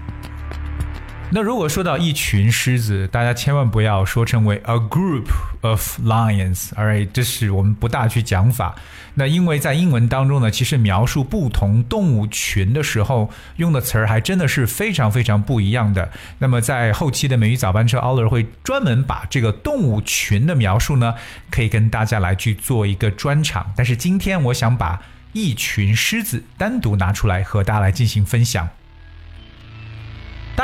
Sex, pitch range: male, 105-130 Hz